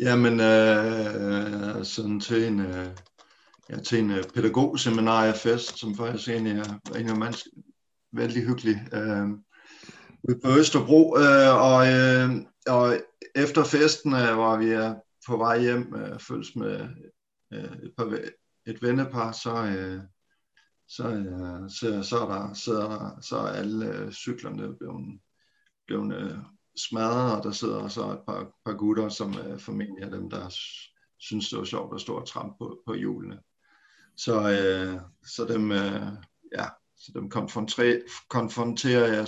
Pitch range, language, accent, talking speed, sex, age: 105-120 Hz, Danish, native, 150 wpm, male, 50-69